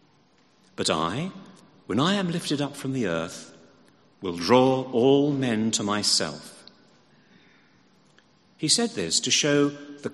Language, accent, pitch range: English, British, 115-185 Hz